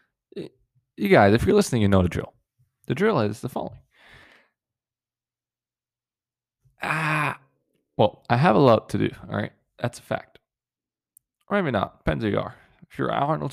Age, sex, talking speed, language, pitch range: 20-39, male, 165 wpm, English, 95-130 Hz